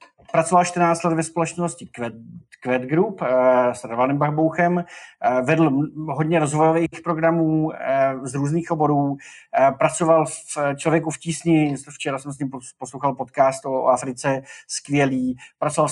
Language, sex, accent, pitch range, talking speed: Czech, male, native, 135-165 Hz, 135 wpm